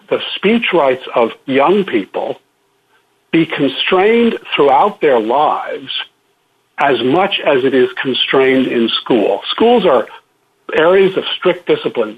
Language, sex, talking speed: English, male, 125 wpm